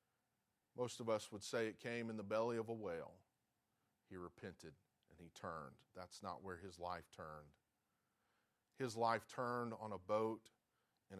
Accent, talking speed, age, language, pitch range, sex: American, 165 wpm, 40-59, English, 105-130 Hz, male